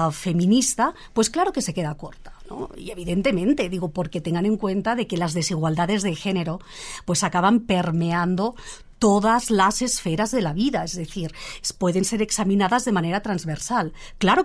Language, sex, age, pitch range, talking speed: Spanish, female, 40-59, 175-230 Hz, 160 wpm